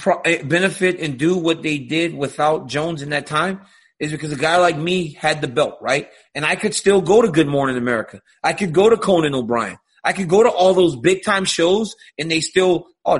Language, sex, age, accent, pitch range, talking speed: English, male, 30-49, American, 150-185 Hz, 225 wpm